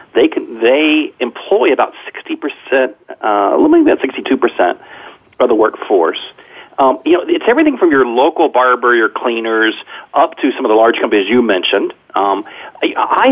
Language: English